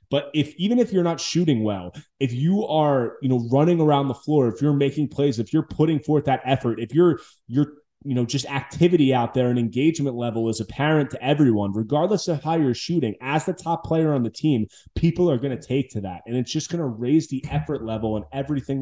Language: English